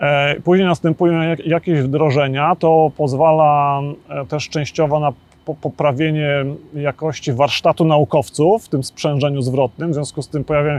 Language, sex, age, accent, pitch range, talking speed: Polish, male, 30-49, native, 135-155 Hz, 120 wpm